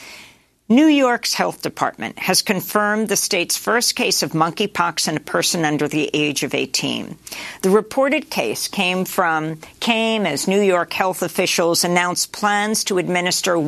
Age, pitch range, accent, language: 50-69, 165-210 Hz, American, English